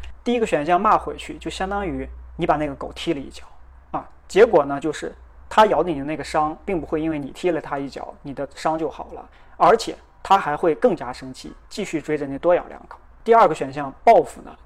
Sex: male